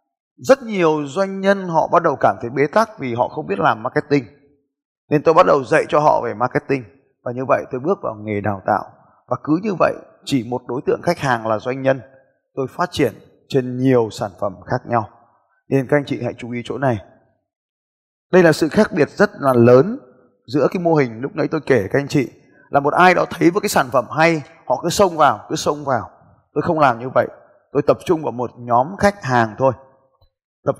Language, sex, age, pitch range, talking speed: Vietnamese, male, 20-39, 120-155 Hz, 230 wpm